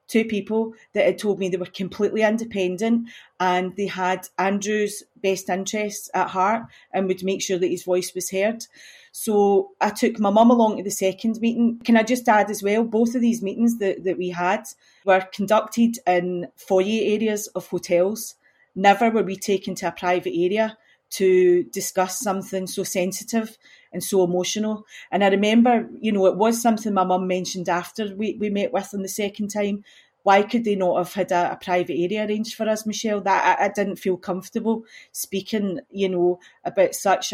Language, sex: English, female